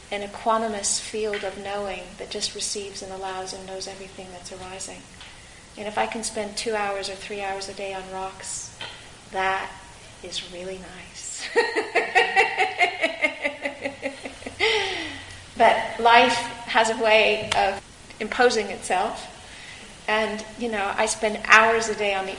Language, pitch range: English, 195-230 Hz